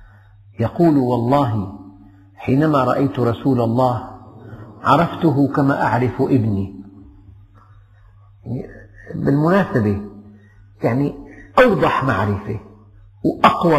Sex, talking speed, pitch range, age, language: male, 70 wpm, 100-140 Hz, 50-69, Arabic